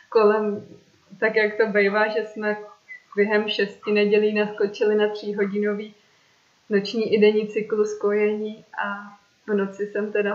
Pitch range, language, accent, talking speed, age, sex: 200-215 Hz, Czech, native, 140 wpm, 20-39, female